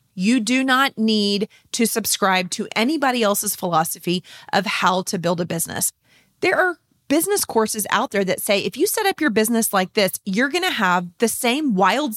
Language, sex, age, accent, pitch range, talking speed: English, female, 30-49, American, 190-255 Hz, 185 wpm